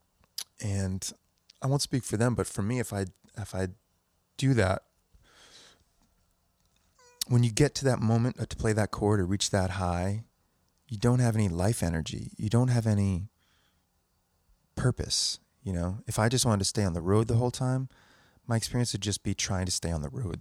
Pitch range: 90-115 Hz